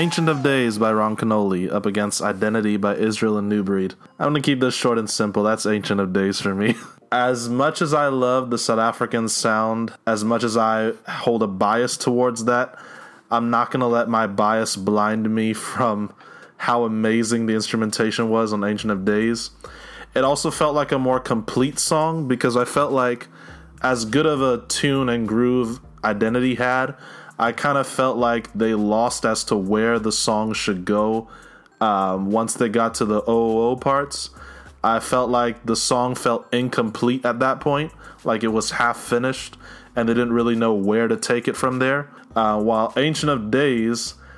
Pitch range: 110-125 Hz